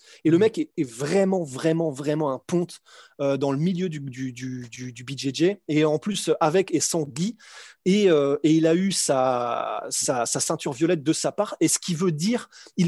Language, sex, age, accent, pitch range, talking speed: French, male, 30-49, French, 150-195 Hz, 200 wpm